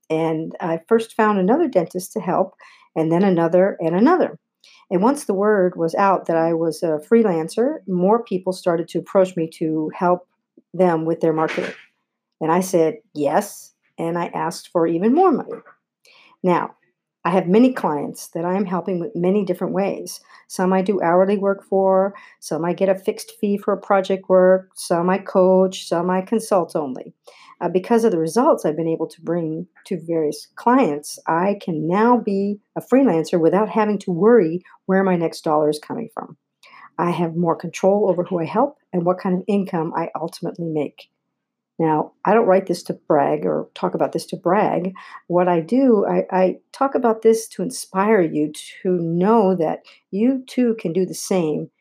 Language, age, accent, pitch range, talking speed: English, 50-69, American, 170-220 Hz, 190 wpm